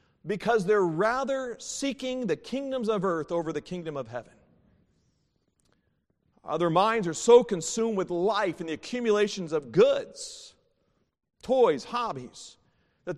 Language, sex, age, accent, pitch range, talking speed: English, male, 40-59, American, 150-220 Hz, 130 wpm